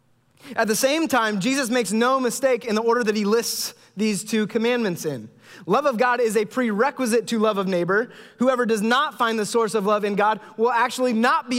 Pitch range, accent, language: 165-260 Hz, American, English